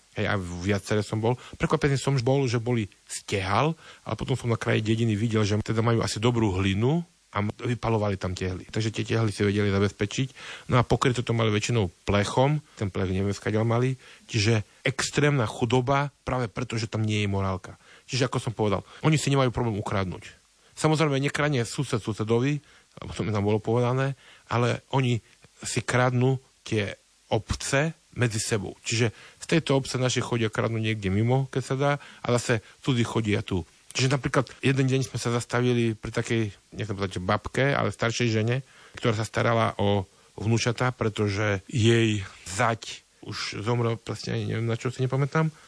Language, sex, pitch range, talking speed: Slovak, male, 105-130 Hz, 165 wpm